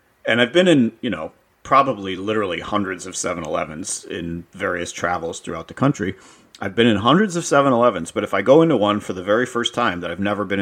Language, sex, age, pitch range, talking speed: English, male, 40-59, 100-120 Hz, 215 wpm